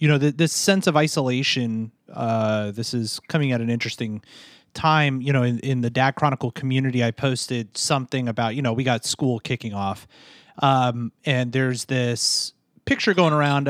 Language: English